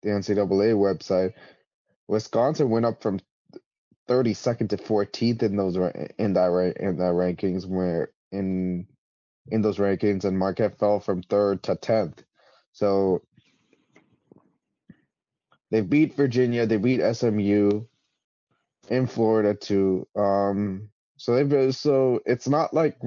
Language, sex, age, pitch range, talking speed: English, male, 20-39, 100-120 Hz, 125 wpm